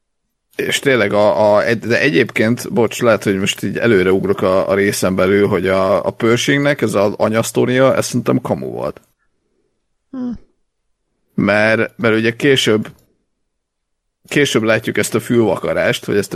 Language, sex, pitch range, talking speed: Hungarian, male, 100-115 Hz, 145 wpm